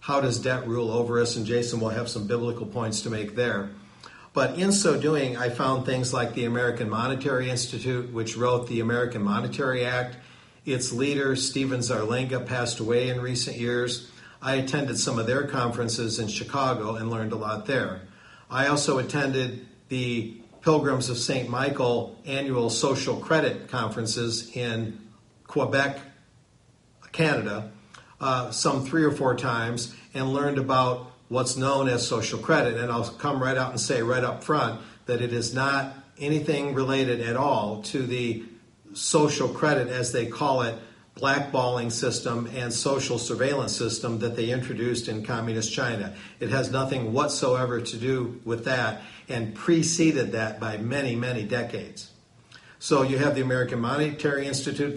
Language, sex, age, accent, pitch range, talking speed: English, male, 50-69, American, 115-135 Hz, 160 wpm